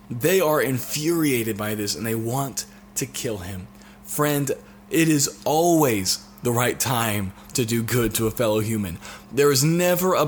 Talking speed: 170 wpm